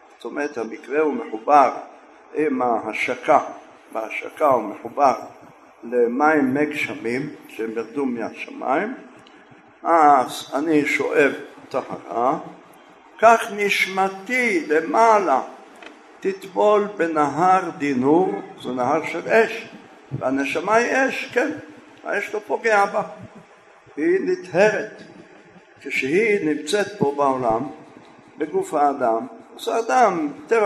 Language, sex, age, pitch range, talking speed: Hebrew, male, 60-79, 135-225 Hz, 95 wpm